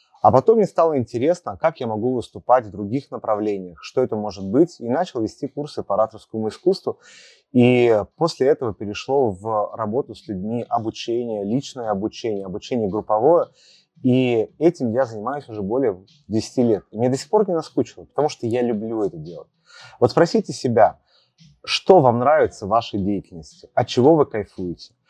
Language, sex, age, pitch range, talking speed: Russian, male, 30-49, 105-145 Hz, 165 wpm